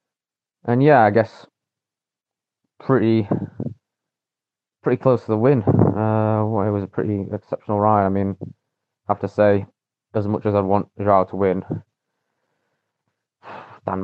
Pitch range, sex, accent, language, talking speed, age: 100-120 Hz, male, British, English, 140 wpm, 20-39